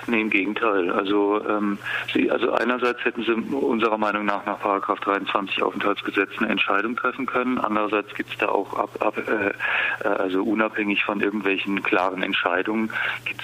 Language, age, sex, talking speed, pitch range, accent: German, 40-59, male, 160 wpm, 95-110 Hz, German